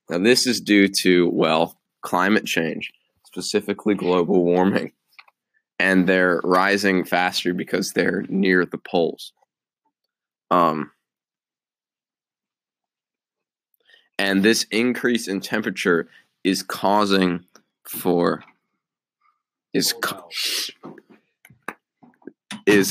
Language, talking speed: English, 80 wpm